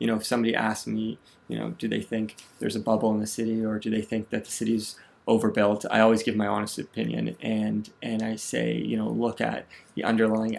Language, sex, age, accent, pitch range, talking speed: English, male, 20-39, American, 105-115 Hz, 230 wpm